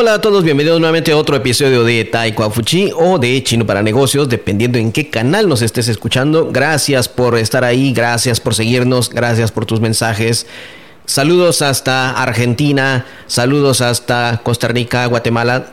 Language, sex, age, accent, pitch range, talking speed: English, male, 30-49, Mexican, 120-150 Hz, 155 wpm